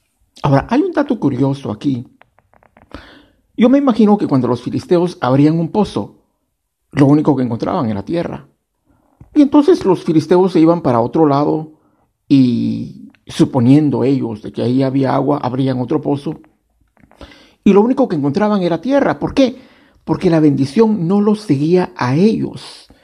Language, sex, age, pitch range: Spanish, male, 50-69, 130-185 Hz